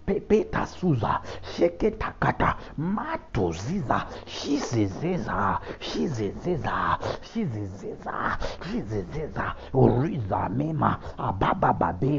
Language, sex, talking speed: English, male, 100 wpm